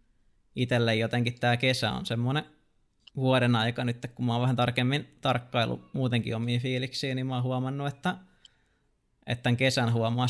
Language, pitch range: Finnish, 115-130 Hz